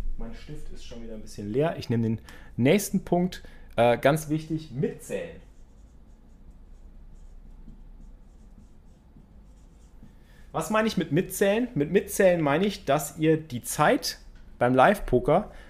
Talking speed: 120 wpm